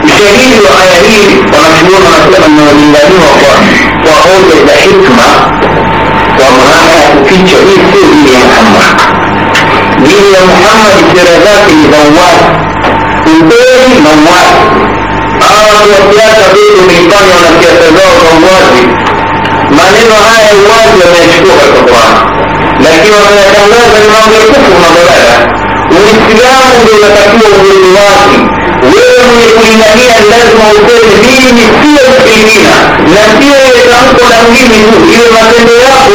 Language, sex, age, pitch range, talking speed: Swahili, male, 60-79, 180-235 Hz, 35 wpm